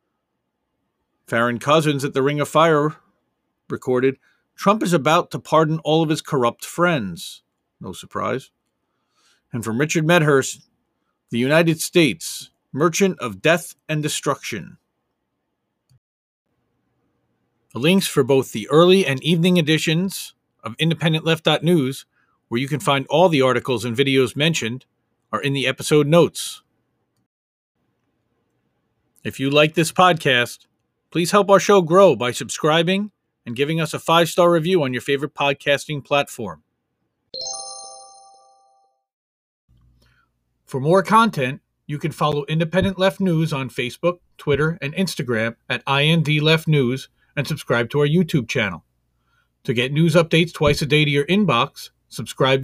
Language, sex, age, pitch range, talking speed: English, male, 40-59, 130-165 Hz, 130 wpm